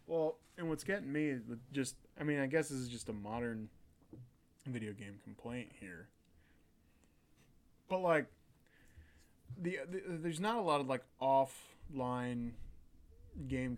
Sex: male